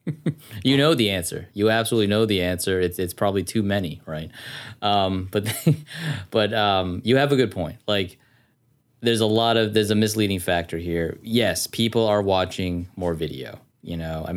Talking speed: 185 wpm